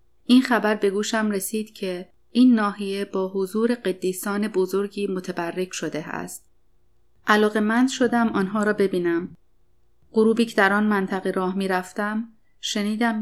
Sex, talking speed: female, 125 wpm